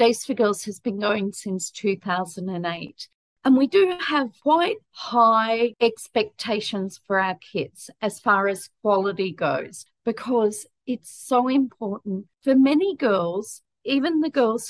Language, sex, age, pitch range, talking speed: English, female, 40-59, 195-235 Hz, 135 wpm